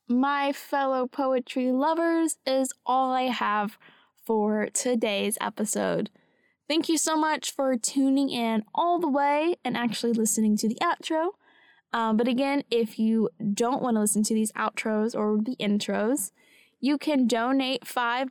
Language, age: English, 10-29